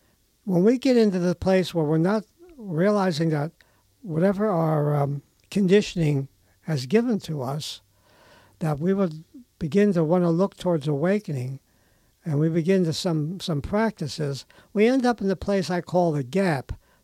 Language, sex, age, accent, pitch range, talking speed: English, male, 60-79, American, 150-185 Hz, 160 wpm